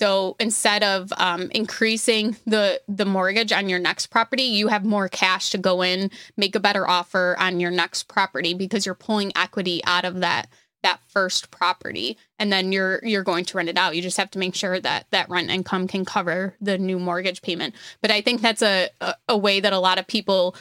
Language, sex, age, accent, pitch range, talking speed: English, female, 20-39, American, 185-210 Hz, 220 wpm